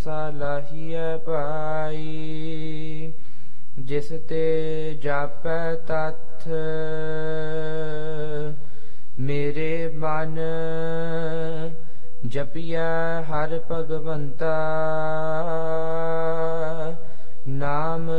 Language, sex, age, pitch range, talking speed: English, male, 20-39, 155-160 Hz, 40 wpm